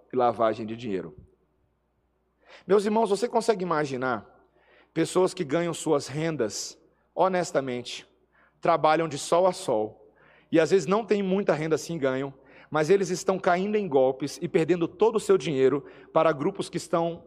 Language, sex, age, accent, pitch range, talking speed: Portuguese, male, 40-59, Brazilian, 135-215 Hz, 155 wpm